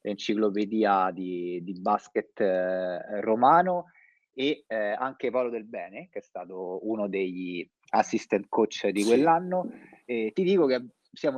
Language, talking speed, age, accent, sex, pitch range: Italian, 135 wpm, 30-49, native, male, 105-140 Hz